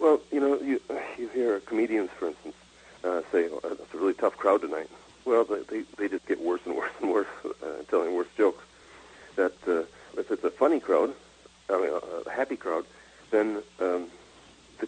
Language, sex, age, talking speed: English, male, 40-59, 195 wpm